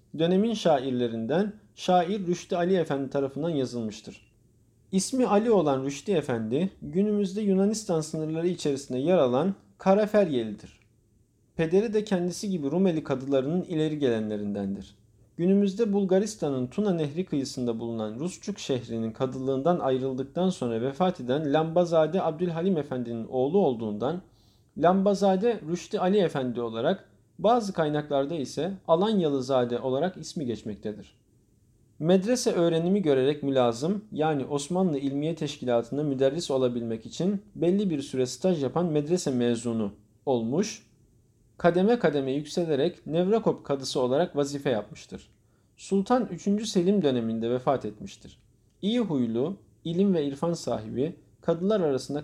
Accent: native